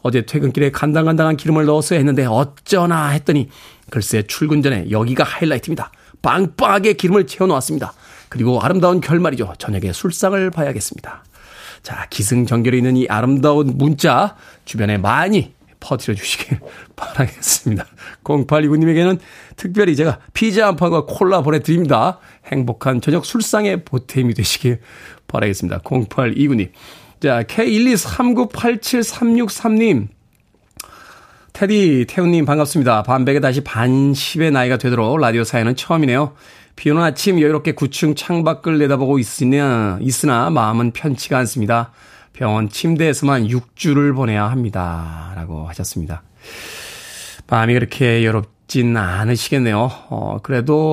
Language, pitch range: Korean, 120-165 Hz